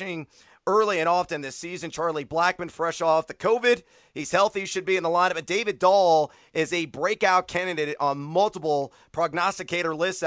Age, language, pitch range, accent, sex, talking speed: 30-49, English, 150-190 Hz, American, male, 170 wpm